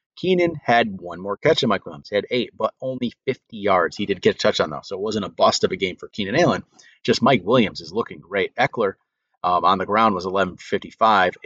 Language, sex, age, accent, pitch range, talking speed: English, male, 30-49, American, 105-130 Hz, 235 wpm